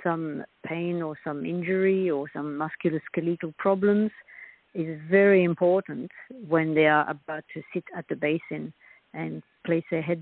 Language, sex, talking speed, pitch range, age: English, female, 145 wpm, 160-190 Hz, 60-79